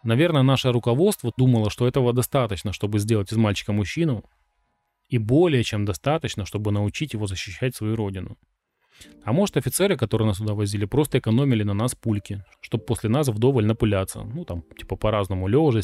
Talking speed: 165 wpm